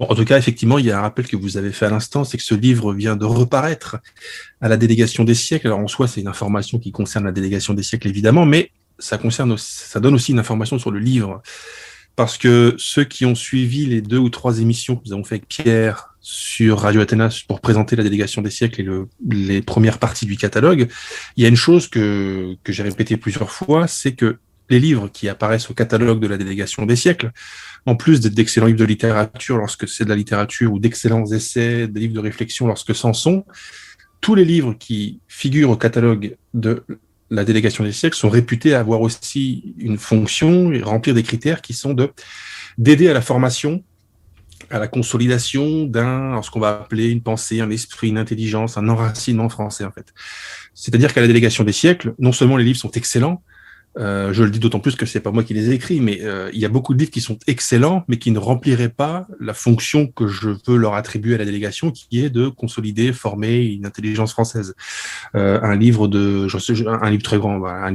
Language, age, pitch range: French, 20-39, 105-125 Hz